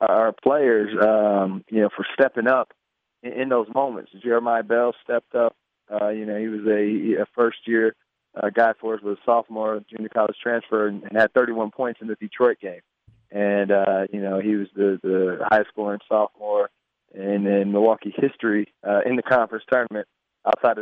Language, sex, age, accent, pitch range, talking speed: English, male, 20-39, American, 100-115 Hz, 185 wpm